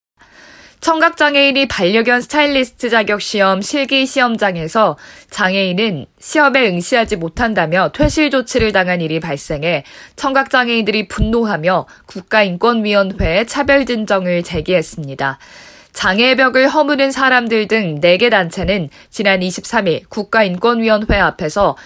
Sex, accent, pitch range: female, native, 185-250 Hz